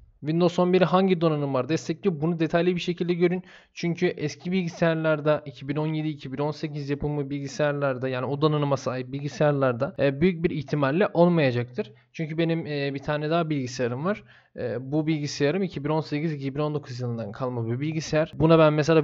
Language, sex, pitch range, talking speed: Turkish, male, 145-175 Hz, 140 wpm